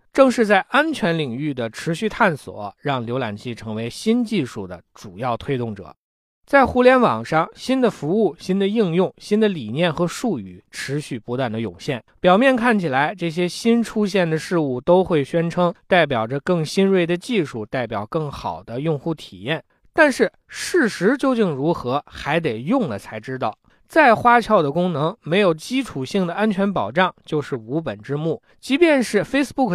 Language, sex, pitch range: Chinese, male, 135-215 Hz